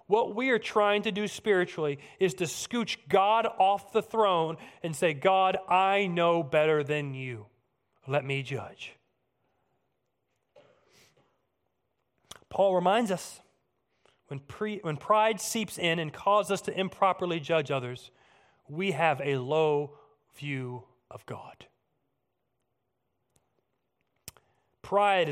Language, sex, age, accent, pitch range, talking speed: English, male, 30-49, American, 160-220 Hz, 115 wpm